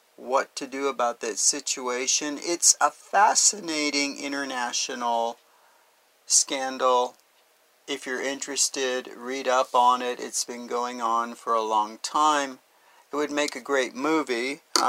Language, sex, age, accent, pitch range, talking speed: English, male, 40-59, American, 130-190 Hz, 130 wpm